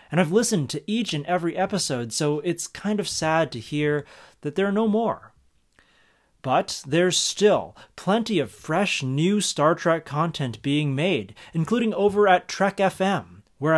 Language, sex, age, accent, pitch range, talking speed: English, male, 30-49, American, 130-195 Hz, 165 wpm